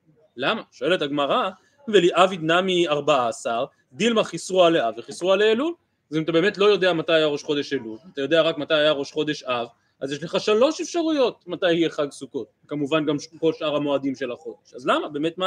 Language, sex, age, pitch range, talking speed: Hebrew, male, 30-49, 150-215 Hz, 200 wpm